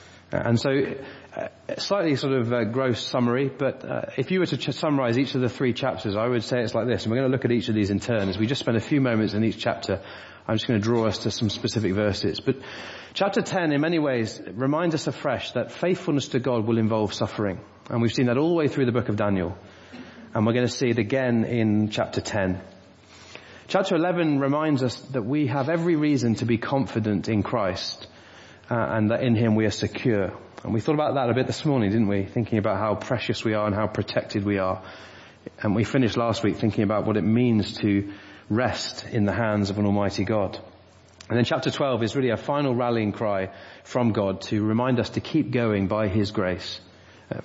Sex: male